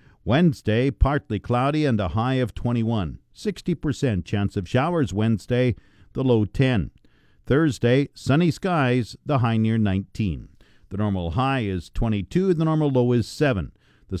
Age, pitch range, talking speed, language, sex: 50-69, 110-150 Hz, 145 wpm, English, male